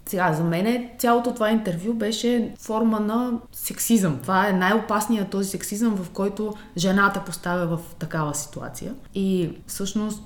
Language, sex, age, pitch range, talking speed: Bulgarian, female, 20-39, 165-210 Hz, 140 wpm